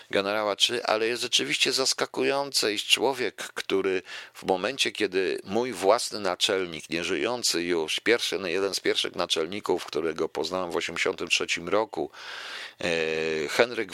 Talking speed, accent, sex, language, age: 120 wpm, native, male, Polish, 50-69